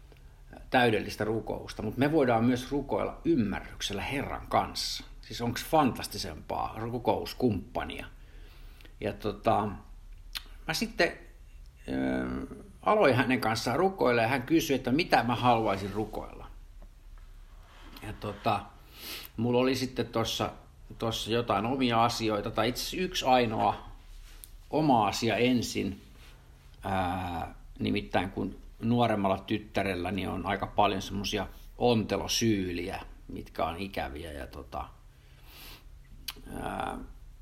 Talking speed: 95 wpm